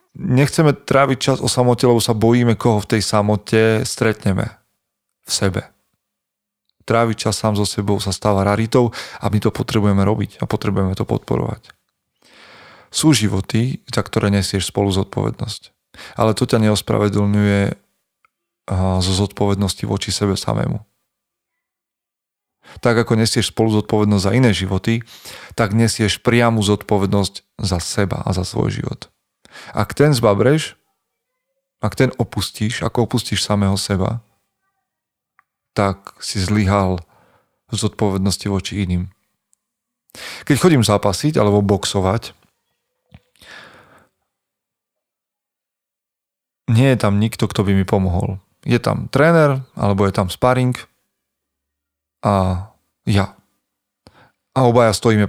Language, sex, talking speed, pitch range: Slovak, male, 115 wpm, 100-120 Hz